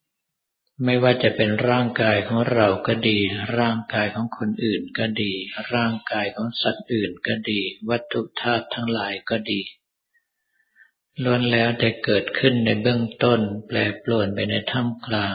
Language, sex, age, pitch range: Thai, male, 50-69, 105-120 Hz